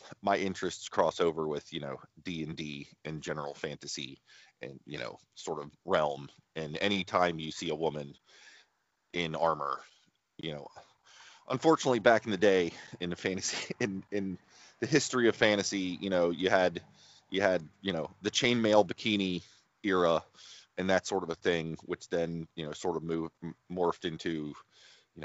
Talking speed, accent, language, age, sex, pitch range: 165 wpm, American, English, 30-49, male, 80-100 Hz